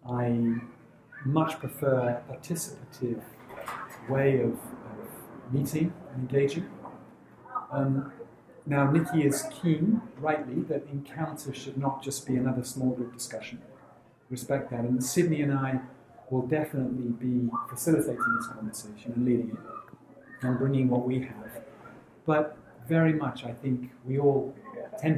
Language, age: English, 40-59